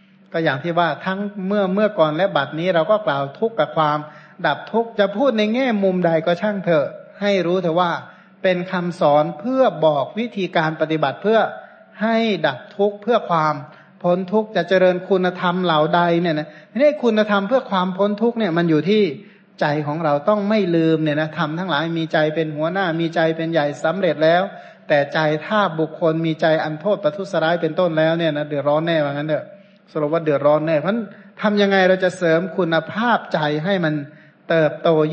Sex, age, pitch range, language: male, 60-79, 155-200 Hz, Thai